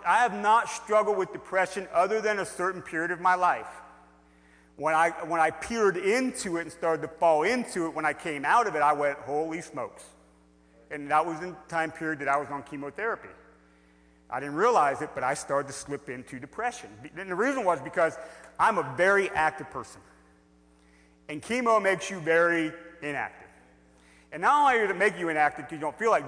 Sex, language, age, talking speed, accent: male, English, 40-59, 200 wpm, American